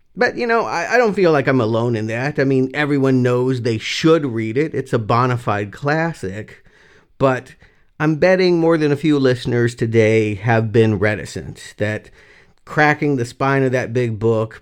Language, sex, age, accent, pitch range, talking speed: English, male, 50-69, American, 115-145 Hz, 185 wpm